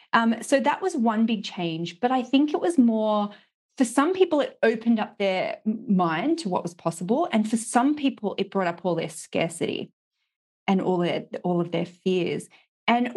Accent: Australian